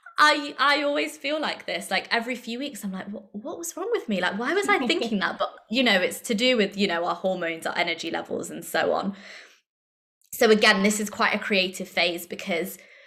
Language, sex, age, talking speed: English, female, 20-39, 225 wpm